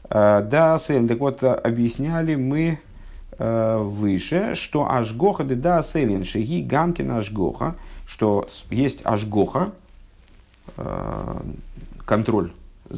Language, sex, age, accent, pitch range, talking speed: Russian, male, 50-69, native, 100-145 Hz, 80 wpm